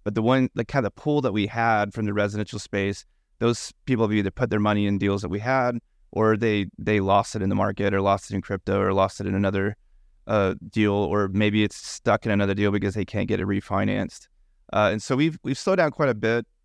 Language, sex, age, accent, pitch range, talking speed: English, male, 30-49, American, 100-115 Hz, 250 wpm